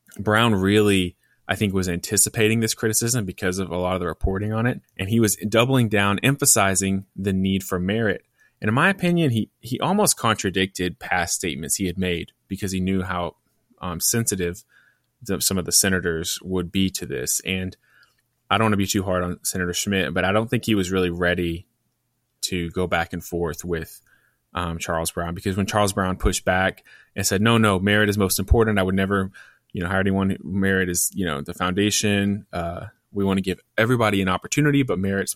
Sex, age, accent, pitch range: male, 20-39, American, 90-105 Hz